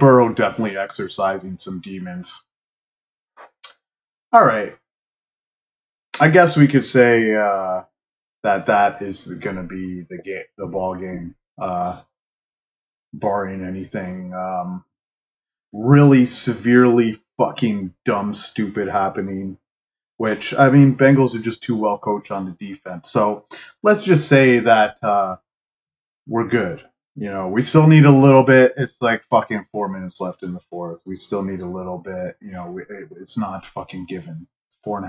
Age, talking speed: 30-49, 150 wpm